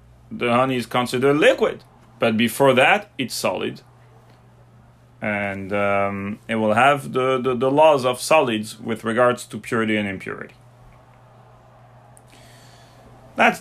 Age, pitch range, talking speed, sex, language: 30-49, 110-130 Hz, 125 wpm, male, English